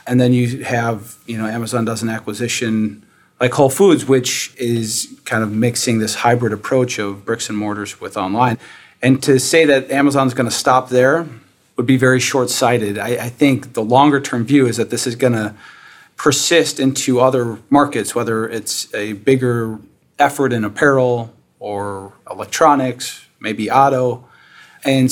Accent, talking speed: American, 160 wpm